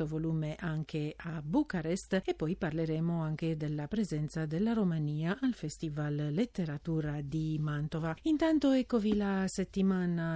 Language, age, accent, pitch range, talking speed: Italian, 50-69, native, 160-190 Hz, 120 wpm